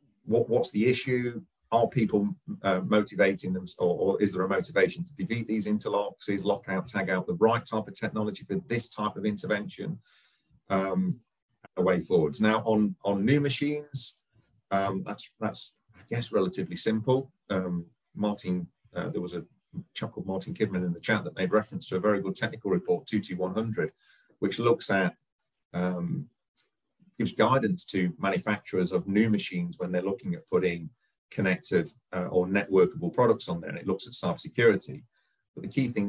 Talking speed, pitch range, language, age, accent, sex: 180 wpm, 95-120 Hz, English, 40-59, British, male